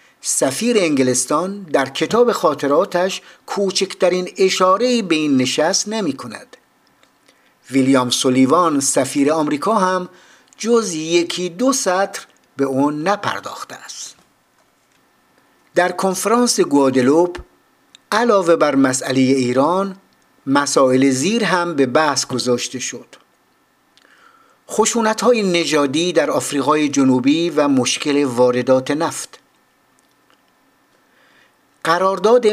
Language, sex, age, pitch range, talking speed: Persian, male, 50-69, 145-195 Hz, 90 wpm